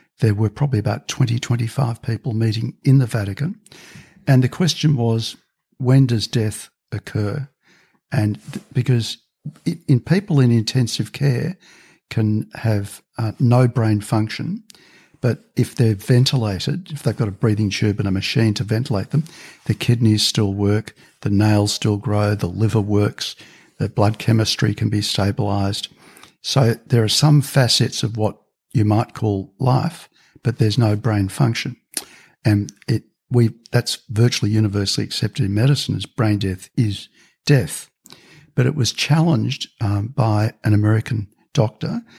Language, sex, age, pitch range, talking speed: English, male, 60-79, 105-135 Hz, 150 wpm